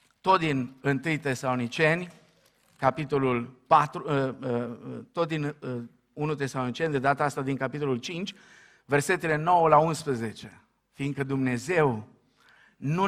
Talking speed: 105 wpm